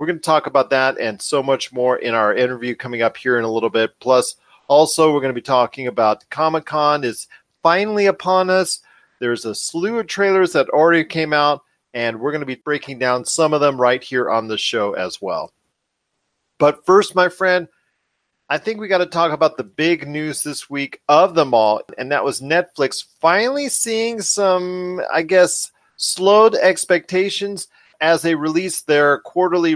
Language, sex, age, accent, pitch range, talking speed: English, male, 40-59, American, 130-175 Hz, 190 wpm